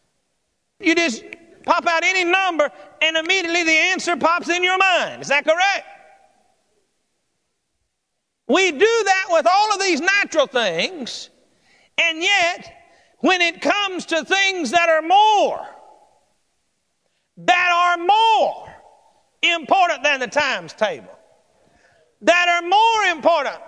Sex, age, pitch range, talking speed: male, 50-69, 295-360 Hz, 120 wpm